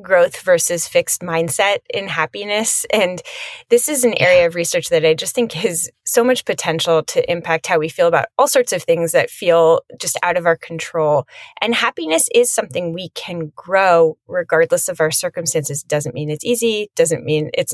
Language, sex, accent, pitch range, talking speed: English, female, American, 160-230 Hz, 195 wpm